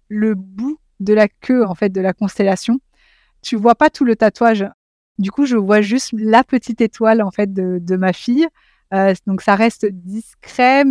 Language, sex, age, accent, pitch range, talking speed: French, female, 30-49, French, 190-230 Hz, 200 wpm